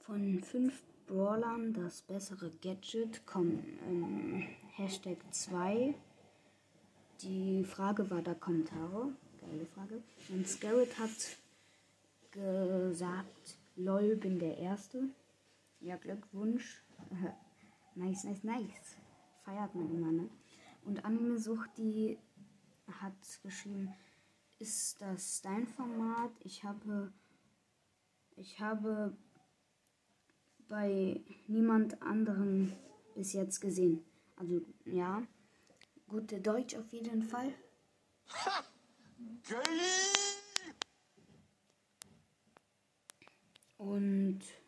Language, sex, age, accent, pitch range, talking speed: German, female, 20-39, German, 180-225 Hz, 80 wpm